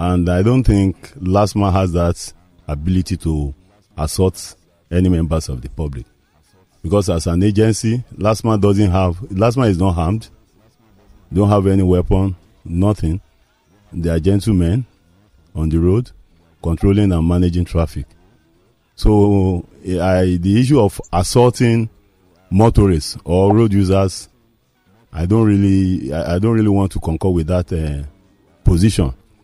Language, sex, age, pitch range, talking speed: English, male, 40-59, 85-105 Hz, 130 wpm